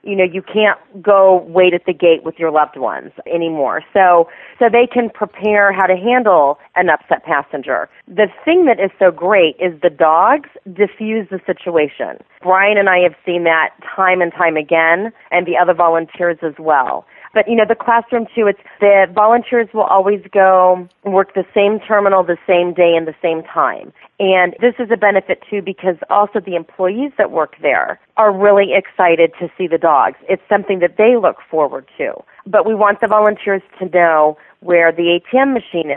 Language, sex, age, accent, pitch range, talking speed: English, female, 30-49, American, 175-205 Hz, 190 wpm